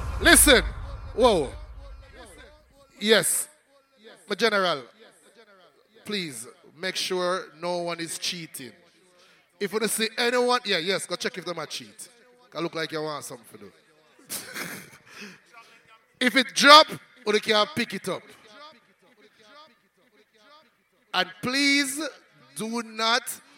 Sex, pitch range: male, 180-240 Hz